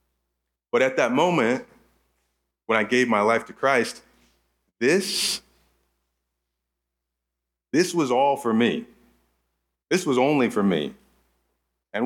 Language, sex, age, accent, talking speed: English, male, 30-49, American, 115 wpm